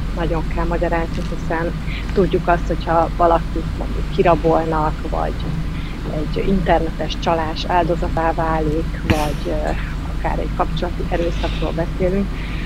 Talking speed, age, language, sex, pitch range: 105 wpm, 30-49, Hungarian, female, 160-175 Hz